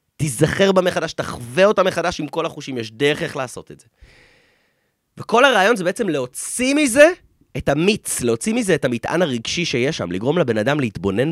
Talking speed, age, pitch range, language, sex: 180 wpm, 30-49, 115-180 Hz, Hebrew, male